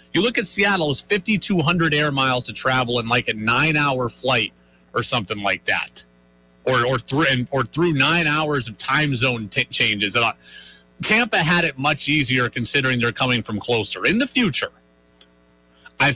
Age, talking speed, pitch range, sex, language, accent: 30-49, 165 wpm, 115-165 Hz, male, English, American